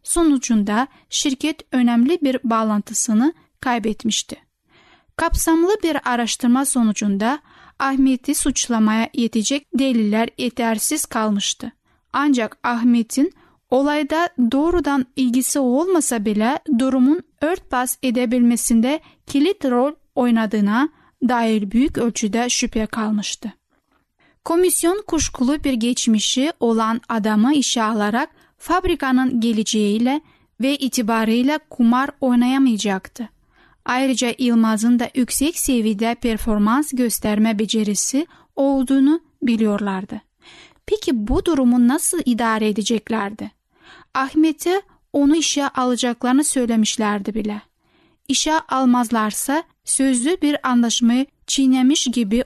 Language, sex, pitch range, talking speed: Turkish, female, 230-285 Hz, 90 wpm